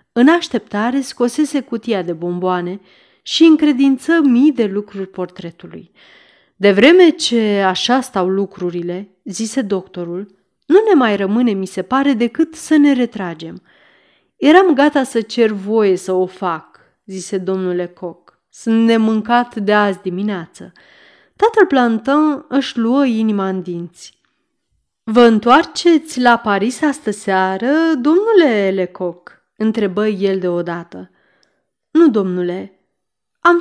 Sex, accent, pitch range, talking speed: female, native, 190-275 Hz, 120 wpm